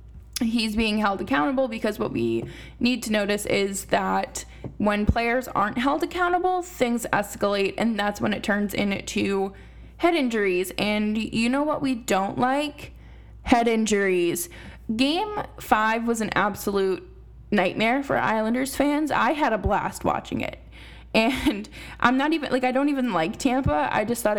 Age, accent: 10-29, American